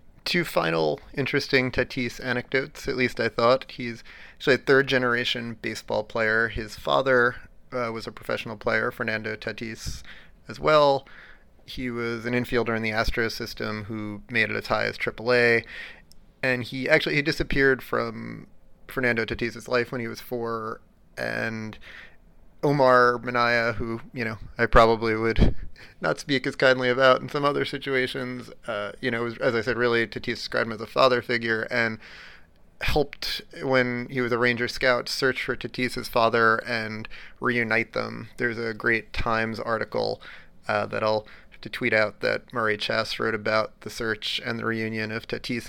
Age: 30-49